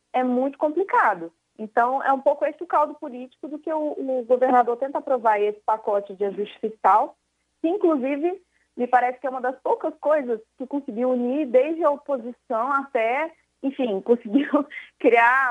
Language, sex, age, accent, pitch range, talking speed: Portuguese, female, 20-39, Brazilian, 215-275 Hz, 165 wpm